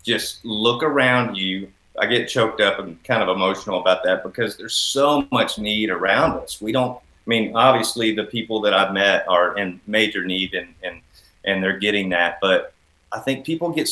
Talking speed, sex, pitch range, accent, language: 200 wpm, male, 95-120 Hz, American, English